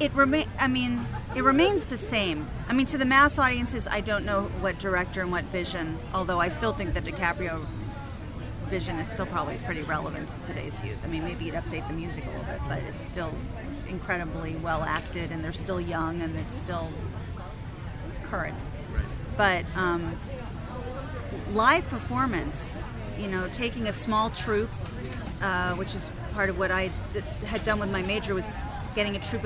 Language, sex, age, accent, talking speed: English, female, 30-49, American, 180 wpm